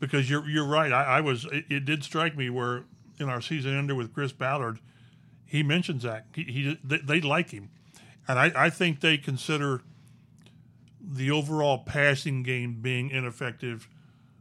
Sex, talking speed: male, 170 wpm